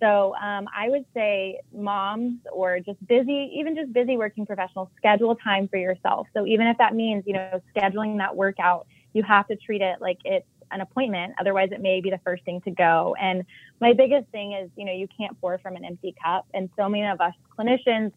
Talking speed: 220 wpm